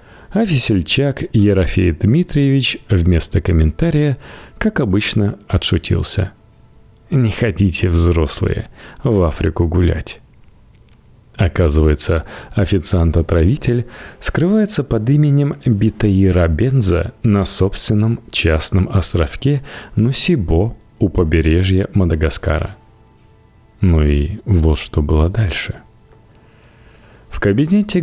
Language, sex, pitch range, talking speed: Russian, male, 90-120 Hz, 80 wpm